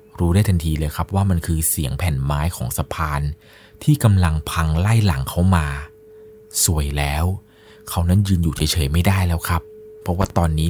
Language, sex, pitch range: Thai, male, 85-125 Hz